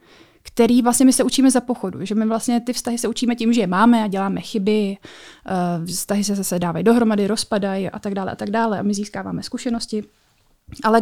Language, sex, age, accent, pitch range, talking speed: Czech, female, 20-39, native, 205-245 Hz, 205 wpm